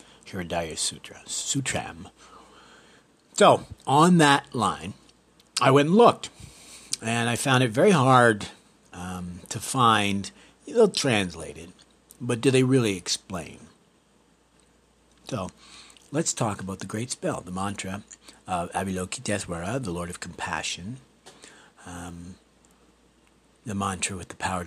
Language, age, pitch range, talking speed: English, 60-79, 90-125 Hz, 120 wpm